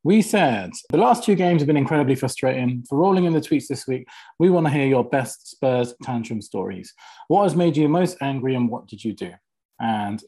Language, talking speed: English, 220 wpm